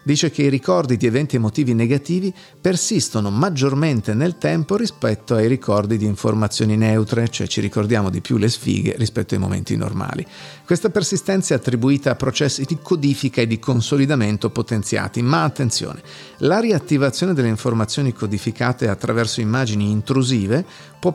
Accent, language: native, Italian